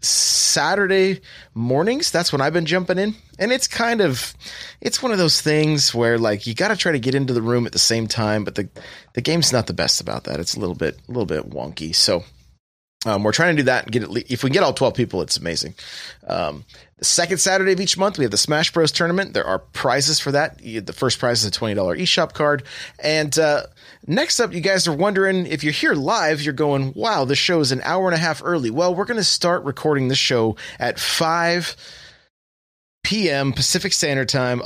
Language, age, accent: English, 30-49, American